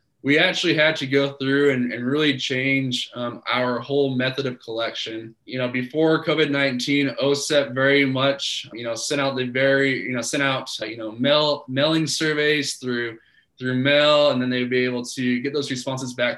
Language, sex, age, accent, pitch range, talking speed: English, male, 20-39, American, 125-140 Hz, 185 wpm